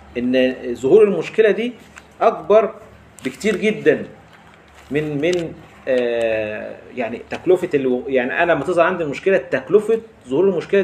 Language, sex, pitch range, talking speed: Arabic, male, 120-200 Hz, 115 wpm